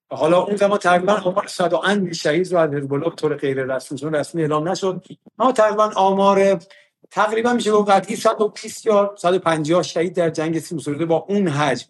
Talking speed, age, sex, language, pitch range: 190 wpm, 50-69, male, Persian, 160-205 Hz